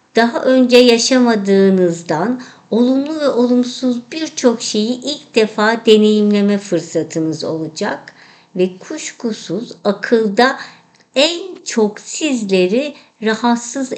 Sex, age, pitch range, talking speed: male, 50-69, 190-250 Hz, 85 wpm